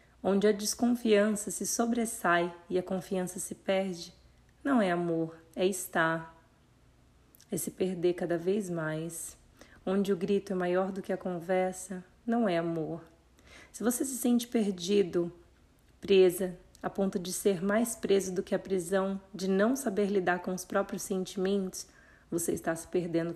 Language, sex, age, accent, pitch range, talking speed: Portuguese, female, 30-49, Brazilian, 175-205 Hz, 155 wpm